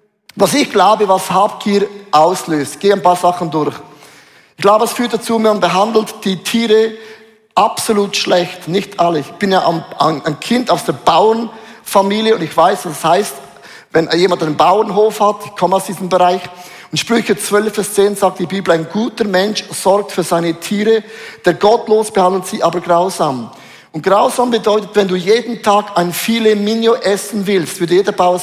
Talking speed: 175 wpm